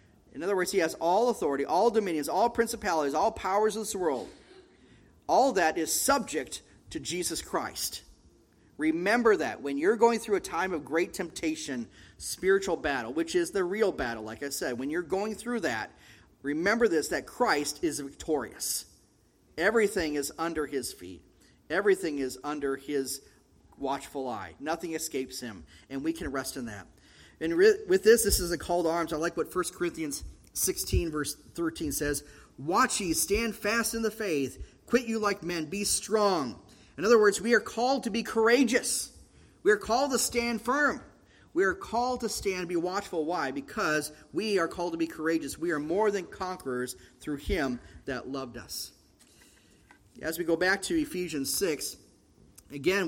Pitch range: 140-225 Hz